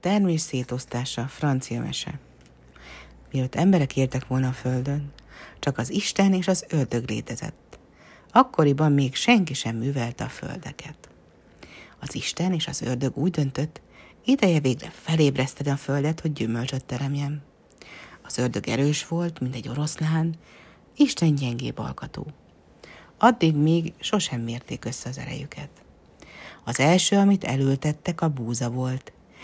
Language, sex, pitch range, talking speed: Hungarian, female, 125-170 Hz, 130 wpm